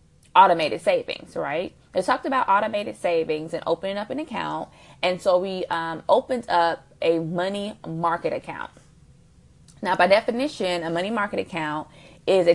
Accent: American